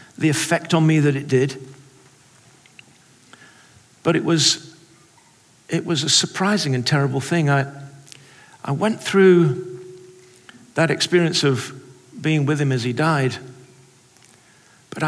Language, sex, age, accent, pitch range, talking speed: English, male, 50-69, British, 130-165 Hz, 125 wpm